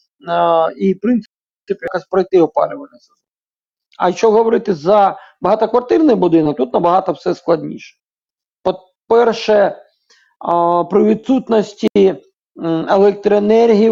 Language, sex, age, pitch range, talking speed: Ukrainian, male, 40-59, 170-210 Hz, 100 wpm